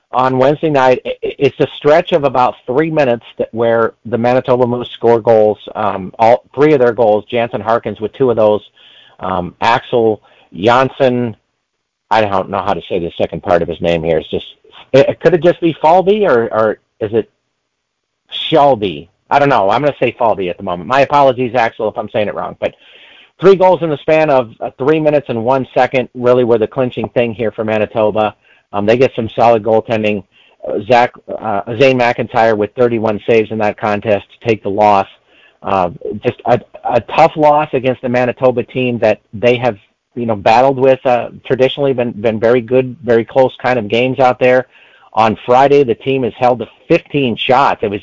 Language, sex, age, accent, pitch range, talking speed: English, male, 40-59, American, 110-135 Hz, 195 wpm